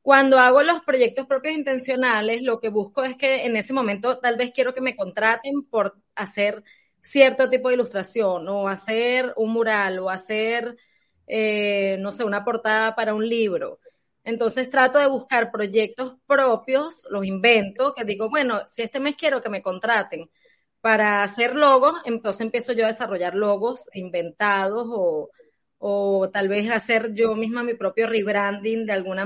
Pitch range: 215-260 Hz